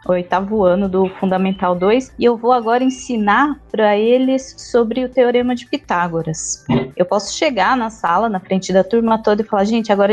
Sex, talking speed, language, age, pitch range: female, 185 wpm, Portuguese, 20-39, 195-255 Hz